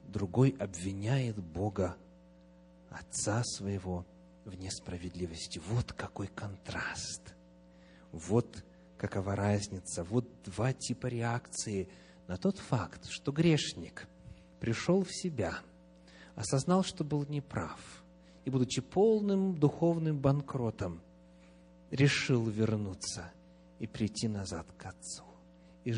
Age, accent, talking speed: 40-59, native, 95 wpm